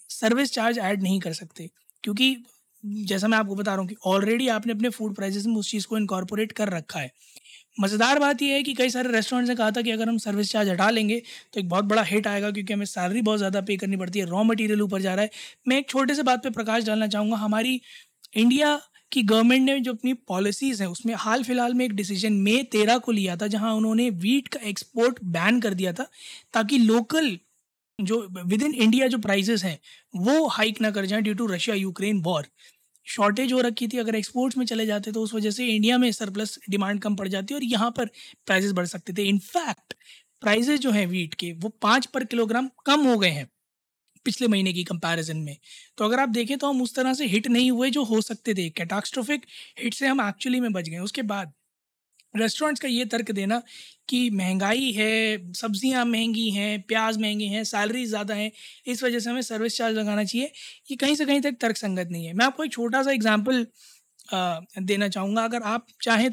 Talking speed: 215 wpm